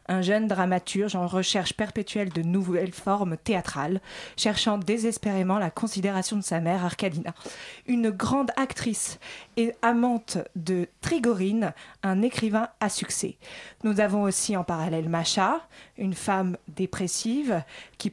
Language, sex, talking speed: French, female, 130 wpm